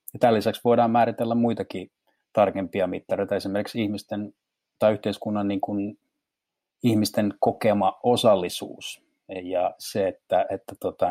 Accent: native